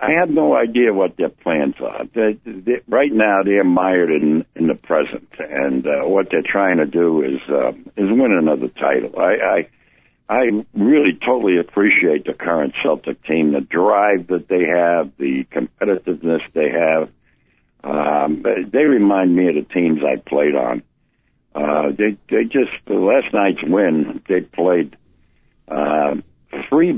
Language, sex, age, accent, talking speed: English, male, 60-79, American, 160 wpm